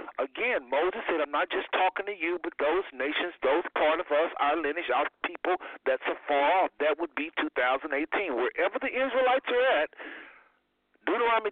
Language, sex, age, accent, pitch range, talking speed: English, male, 50-69, American, 165-265 Hz, 170 wpm